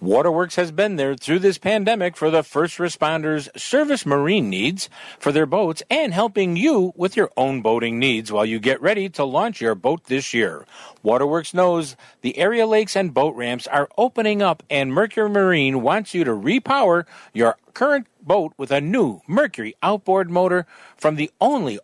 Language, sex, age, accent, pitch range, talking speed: English, male, 50-69, American, 150-220 Hz, 180 wpm